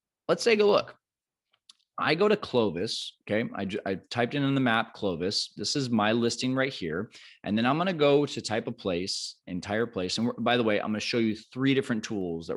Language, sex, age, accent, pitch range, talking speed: English, male, 20-39, American, 95-130 Hz, 235 wpm